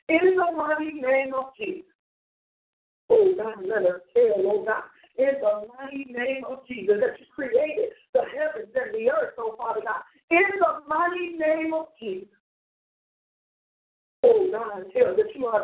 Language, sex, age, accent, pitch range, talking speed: English, female, 50-69, American, 265-375 Hz, 160 wpm